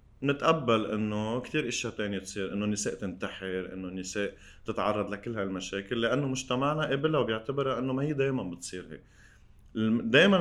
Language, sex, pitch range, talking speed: Arabic, male, 95-125 Hz, 140 wpm